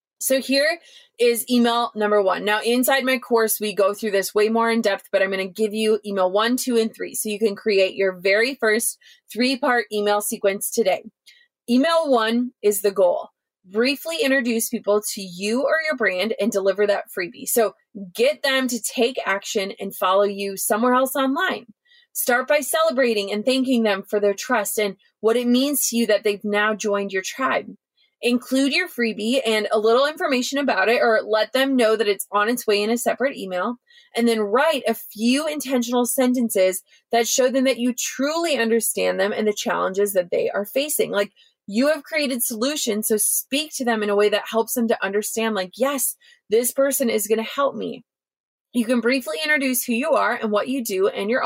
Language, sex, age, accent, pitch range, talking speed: English, female, 20-39, American, 210-270 Hz, 200 wpm